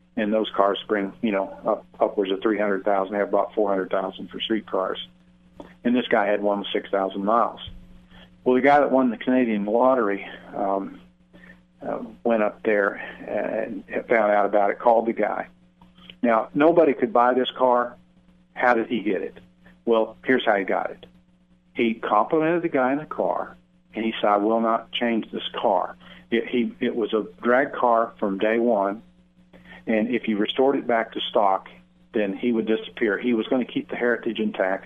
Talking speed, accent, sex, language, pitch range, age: 185 wpm, American, male, English, 100-120 Hz, 50-69